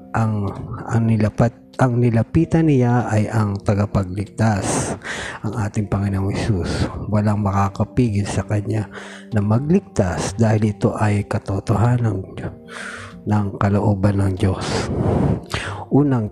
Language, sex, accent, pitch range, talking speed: Filipino, male, native, 100-125 Hz, 105 wpm